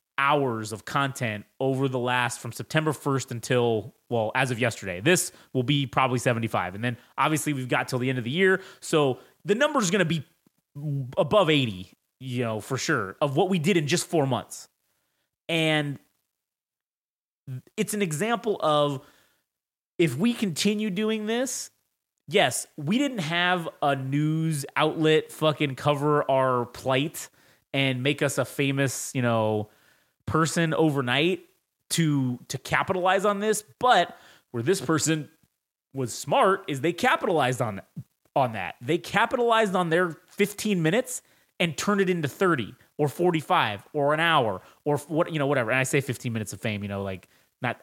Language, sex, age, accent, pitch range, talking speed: English, male, 30-49, American, 125-180 Hz, 160 wpm